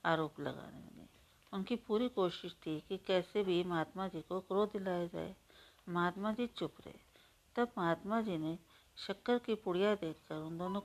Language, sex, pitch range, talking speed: Hindi, female, 170-210 Hz, 165 wpm